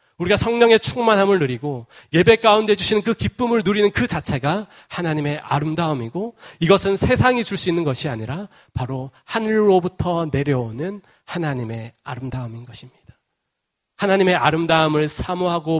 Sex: male